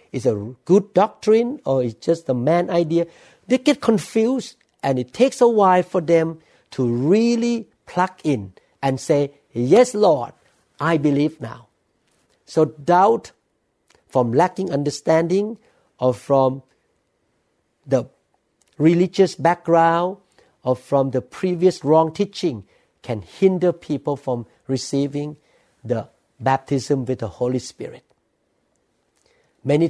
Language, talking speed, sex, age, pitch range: English, 120 wpm, male, 60-79, 130-175 Hz